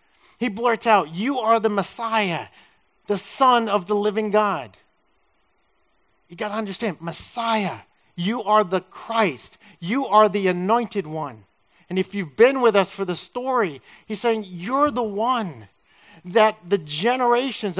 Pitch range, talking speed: 190-245 Hz, 150 wpm